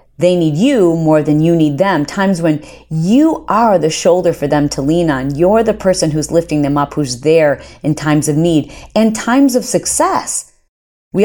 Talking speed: 195 wpm